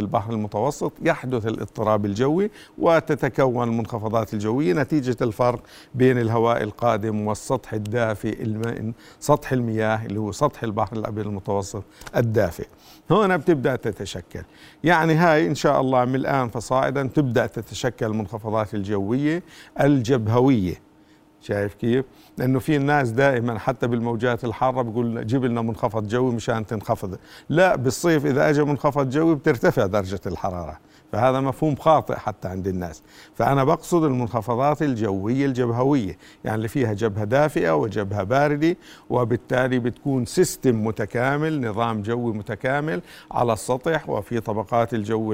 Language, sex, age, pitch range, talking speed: Arabic, male, 50-69, 110-140 Hz, 125 wpm